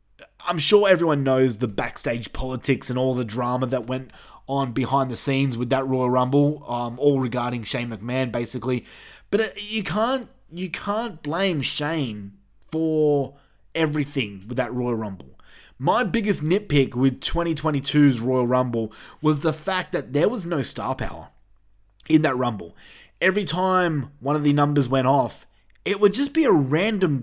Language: English